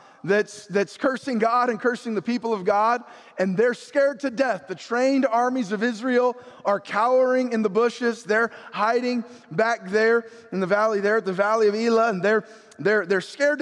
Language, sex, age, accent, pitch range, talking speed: English, male, 20-39, American, 205-250 Hz, 190 wpm